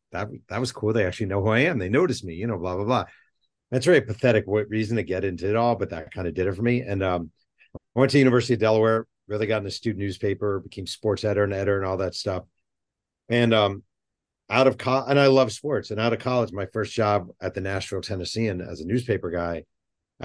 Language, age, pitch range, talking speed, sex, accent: English, 40-59, 90-115 Hz, 245 wpm, male, American